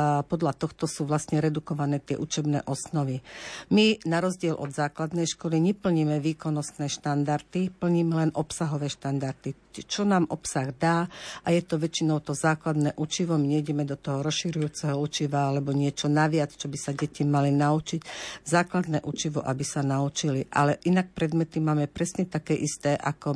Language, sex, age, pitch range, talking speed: Slovak, female, 50-69, 145-165 Hz, 155 wpm